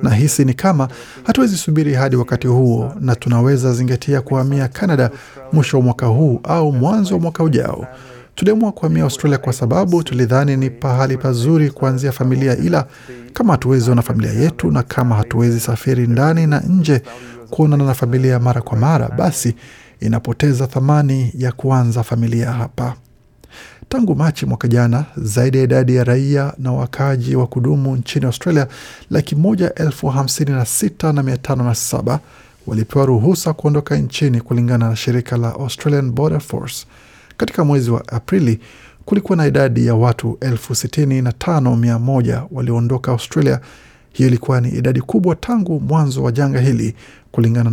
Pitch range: 120-150 Hz